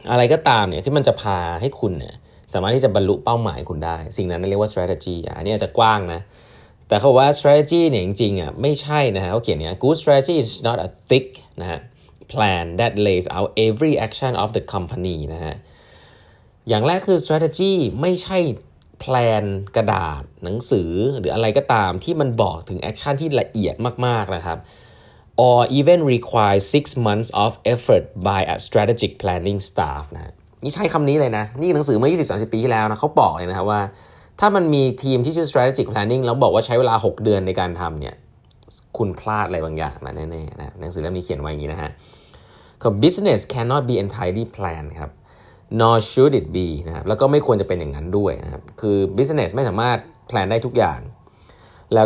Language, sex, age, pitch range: Thai, male, 20-39, 90-130 Hz